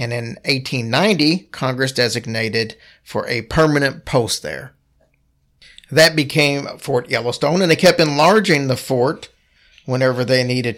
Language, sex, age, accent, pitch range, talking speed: English, male, 40-59, American, 115-150 Hz, 130 wpm